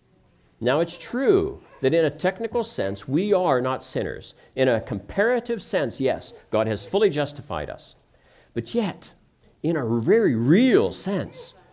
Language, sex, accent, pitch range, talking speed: English, male, American, 140-230 Hz, 150 wpm